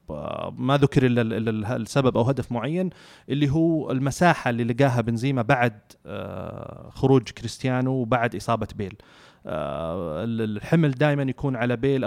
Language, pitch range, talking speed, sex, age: Arabic, 115-140 Hz, 120 wpm, male, 30-49